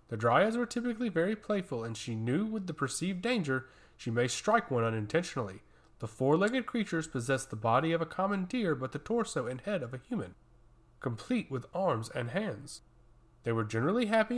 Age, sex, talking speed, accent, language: 30-49, male, 190 wpm, American, English